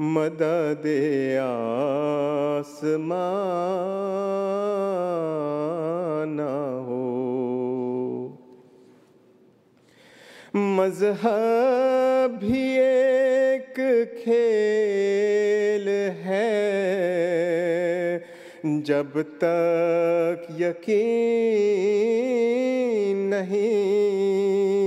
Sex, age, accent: male, 40-59, Indian